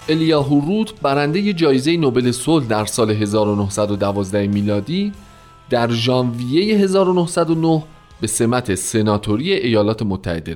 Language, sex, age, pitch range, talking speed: Persian, male, 40-59, 105-160 Hz, 100 wpm